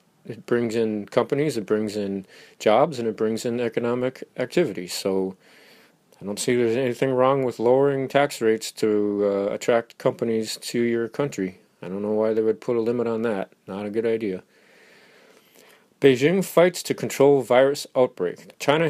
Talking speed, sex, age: 170 wpm, male, 40-59